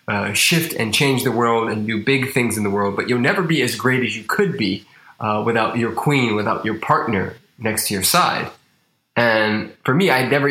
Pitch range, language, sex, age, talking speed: 110-130 Hz, English, male, 20-39, 230 wpm